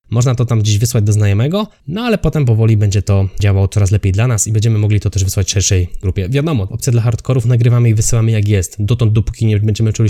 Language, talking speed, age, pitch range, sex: Polish, 245 wpm, 20-39, 100-120 Hz, male